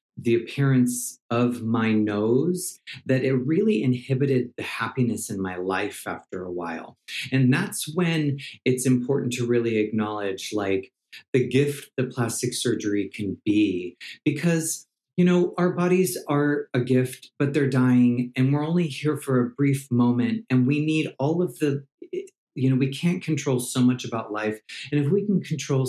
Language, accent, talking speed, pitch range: English, American, 165 wpm, 115-140 Hz